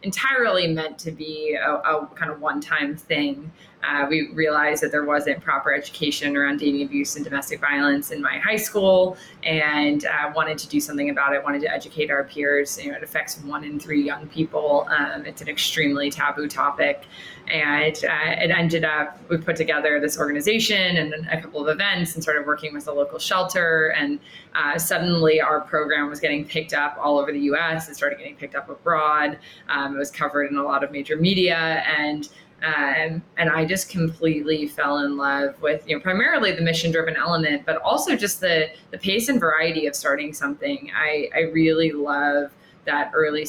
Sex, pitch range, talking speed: female, 145-160 Hz, 190 wpm